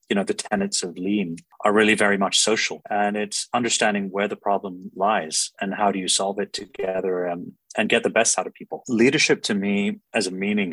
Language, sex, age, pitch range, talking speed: English, male, 30-49, 95-105 Hz, 220 wpm